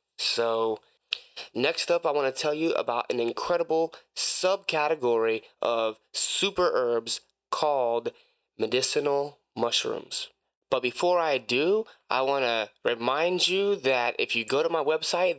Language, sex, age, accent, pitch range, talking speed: English, male, 20-39, American, 120-185 Hz, 135 wpm